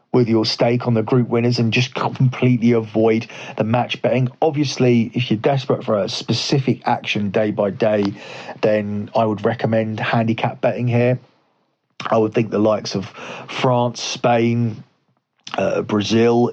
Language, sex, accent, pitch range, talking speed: English, male, British, 105-120 Hz, 150 wpm